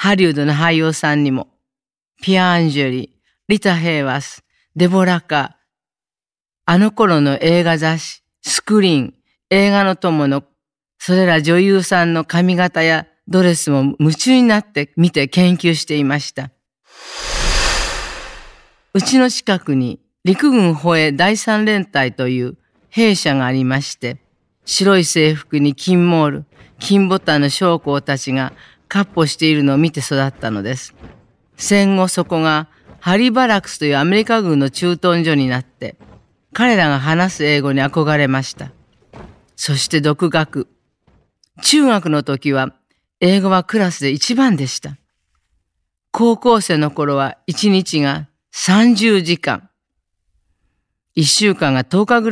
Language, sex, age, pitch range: Japanese, female, 40-59, 140-185 Hz